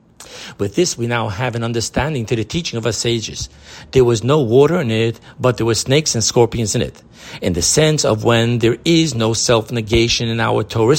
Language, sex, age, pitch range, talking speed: English, male, 50-69, 115-145 Hz, 215 wpm